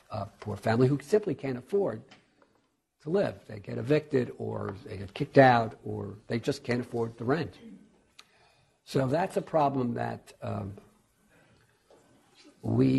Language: English